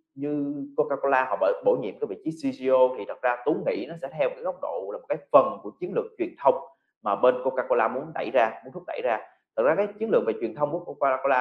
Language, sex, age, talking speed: Vietnamese, male, 20-39, 275 wpm